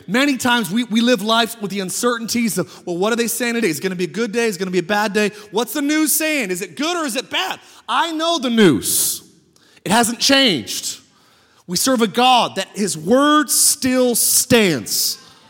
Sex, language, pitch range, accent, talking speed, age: male, English, 185-245 Hz, American, 230 wpm, 30-49